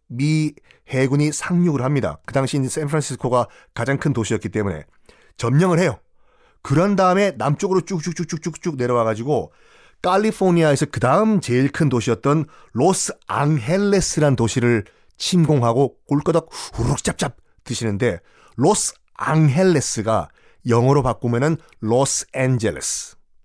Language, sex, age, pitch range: Korean, male, 30-49, 120-170 Hz